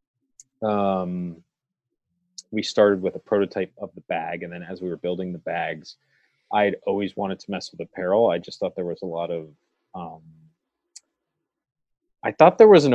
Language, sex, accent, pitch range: English, male, American, 90-125 Hz